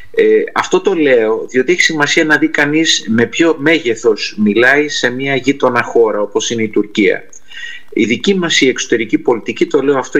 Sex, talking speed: male, 180 wpm